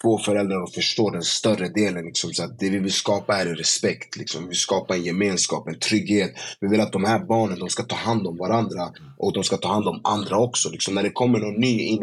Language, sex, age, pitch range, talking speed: Swedish, male, 20-39, 100-120 Hz, 255 wpm